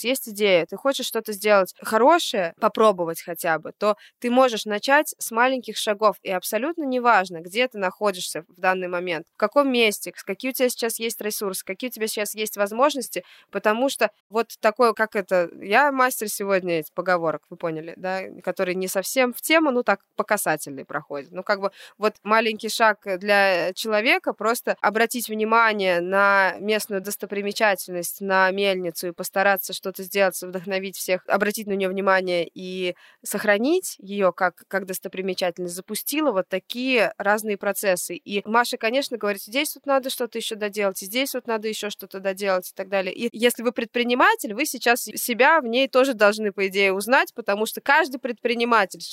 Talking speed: 170 wpm